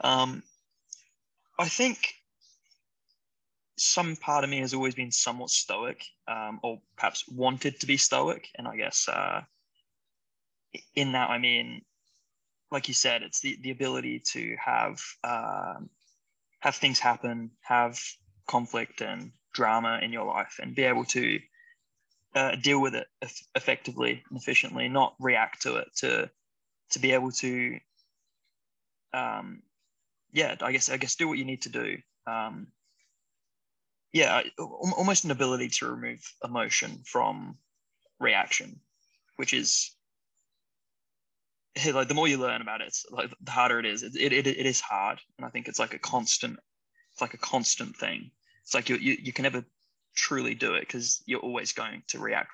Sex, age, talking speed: male, 20-39, 160 wpm